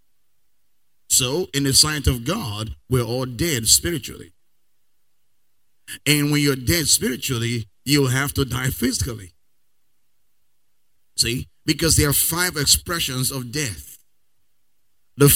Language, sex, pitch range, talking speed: English, male, 115-160 Hz, 115 wpm